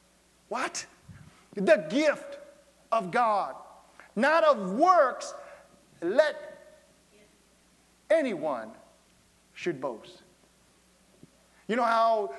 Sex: male